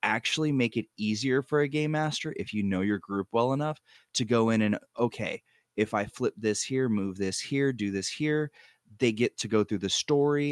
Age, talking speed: 20-39, 215 wpm